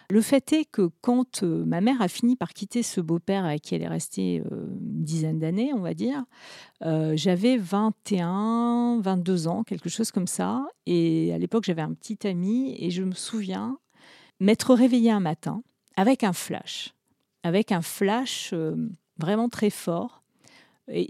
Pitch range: 170-225 Hz